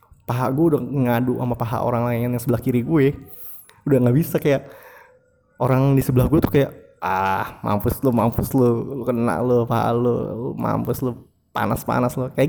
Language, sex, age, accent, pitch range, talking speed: Indonesian, male, 20-39, native, 115-135 Hz, 185 wpm